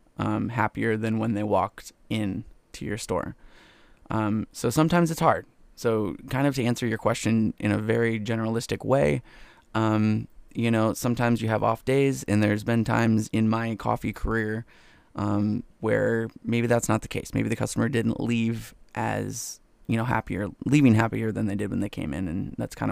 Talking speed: 185 wpm